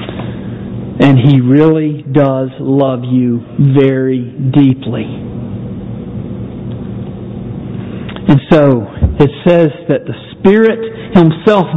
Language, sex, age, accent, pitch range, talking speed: English, male, 50-69, American, 130-165 Hz, 80 wpm